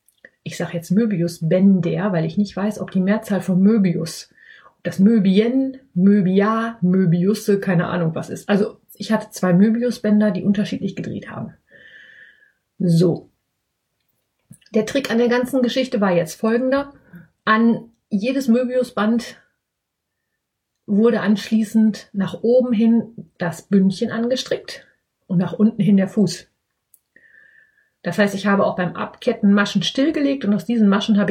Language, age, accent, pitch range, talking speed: German, 30-49, German, 185-235 Hz, 140 wpm